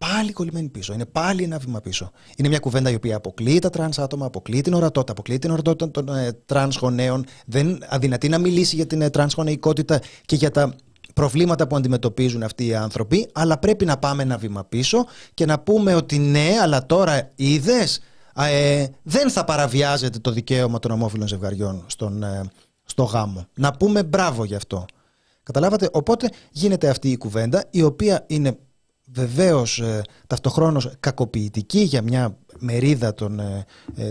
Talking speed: 165 wpm